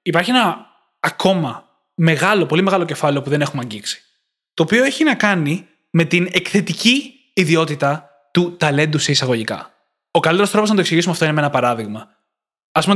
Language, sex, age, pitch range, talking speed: Greek, male, 20-39, 160-210 Hz, 170 wpm